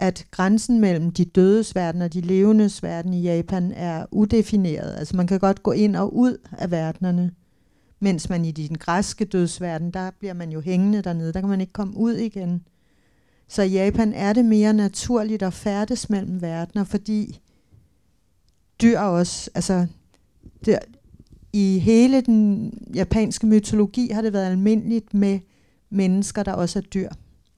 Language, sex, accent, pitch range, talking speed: Danish, female, native, 175-210 Hz, 155 wpm